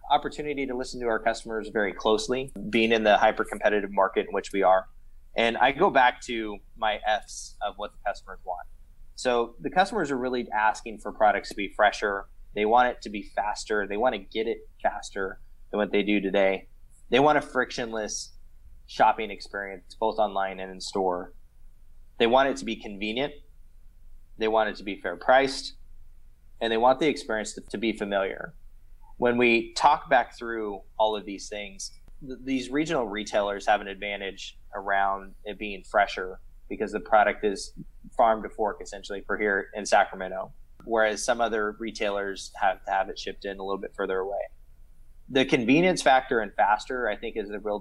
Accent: American